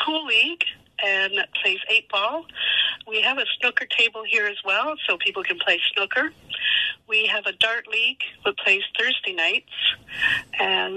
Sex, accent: female, American